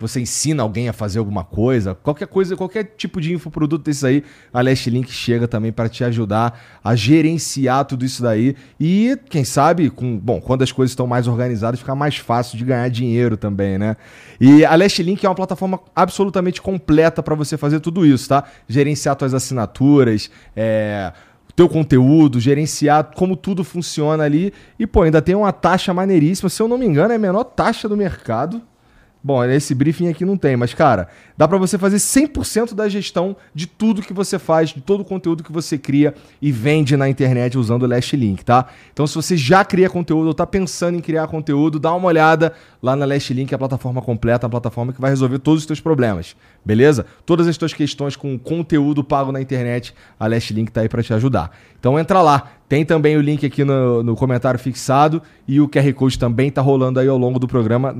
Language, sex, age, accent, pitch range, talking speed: Portuguese, male, 30-49, Brazilian, 125-165 Hz, 210 wpm